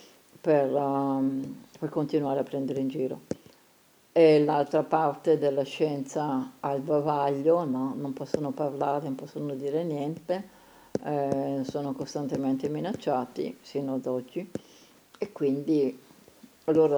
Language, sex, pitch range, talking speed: Italian, female, 140-160 Hz, 120 wpm